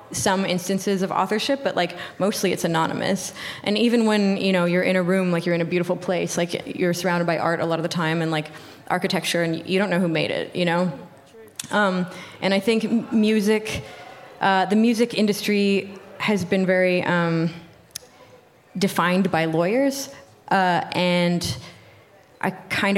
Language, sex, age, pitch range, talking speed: English, female, 20-39, 170-200 Hz, 170 wpm